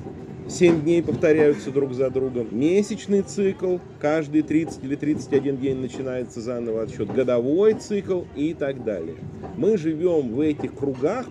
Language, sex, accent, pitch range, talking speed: Russian, male, native, 130-170 Hz, 140 wpm